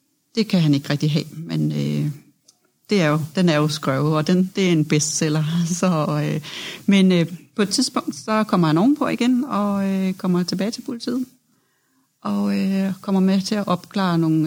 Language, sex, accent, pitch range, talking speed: Danish, female, native, 175-225 Hz, 200 wpm